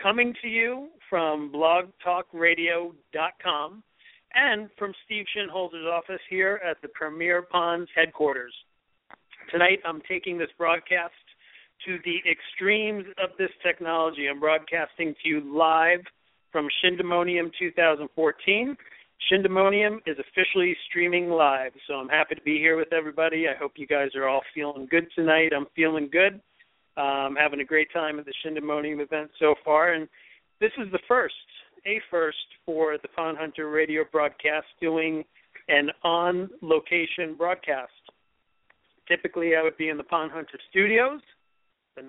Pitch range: 150-180 Hz